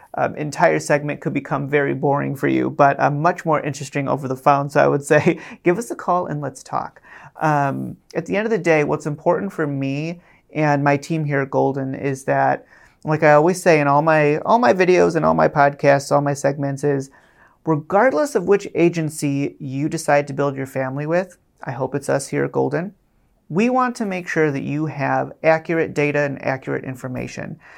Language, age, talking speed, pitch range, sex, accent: English, 30-49, 210 wpm, 140-175 Hz, male, American